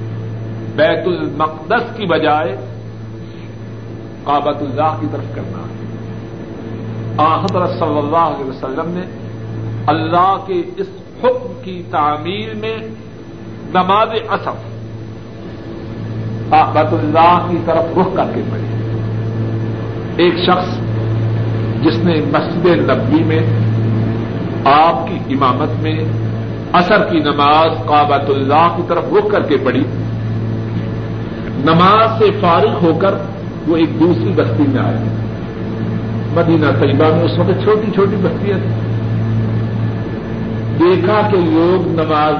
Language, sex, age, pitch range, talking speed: Urdu, male, 60-79, 110-165 Hz, 110 wpm